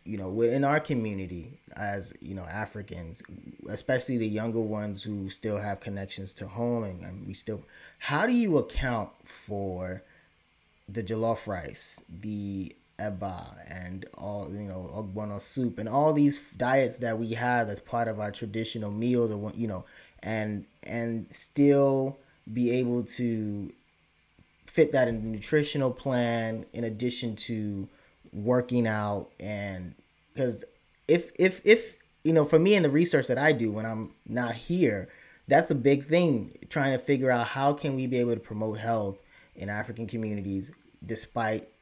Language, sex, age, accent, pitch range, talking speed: English, male, 20-39, American, 105-130 Hz, 160 wpm